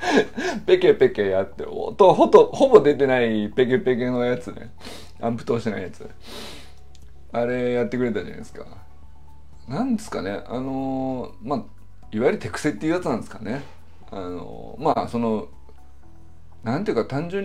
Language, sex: Japanese, male